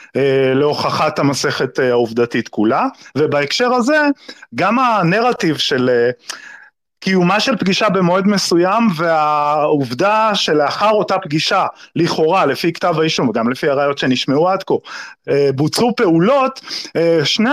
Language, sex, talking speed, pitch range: Hebrew, male, 105 wpm, 155-230 Hz